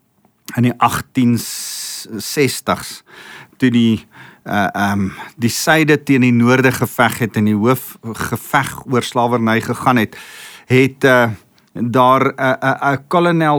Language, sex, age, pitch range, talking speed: English, male, 50-69, 105-130 Hz, 110 wpm